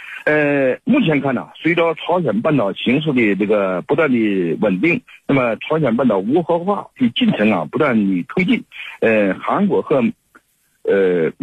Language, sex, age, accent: Chinese, male, 50-69, native